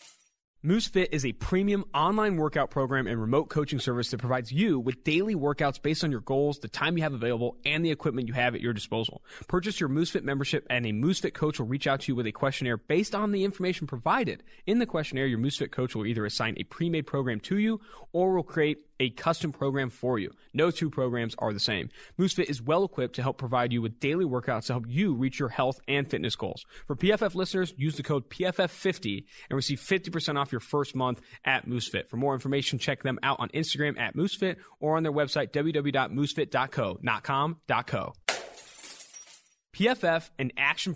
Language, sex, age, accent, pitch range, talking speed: English, male, 20-39, American, 130-165 Hz, 205 wpm